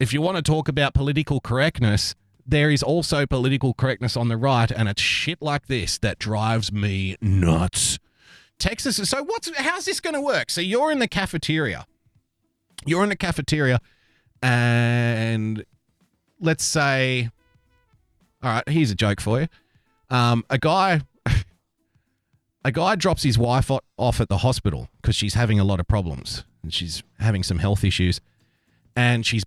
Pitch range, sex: 105-145 Hz, male